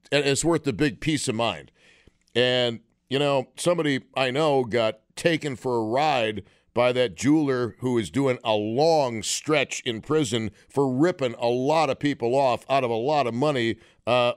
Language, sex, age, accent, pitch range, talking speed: English, male, 50-69, American, 115-155 Hz, 185 wpm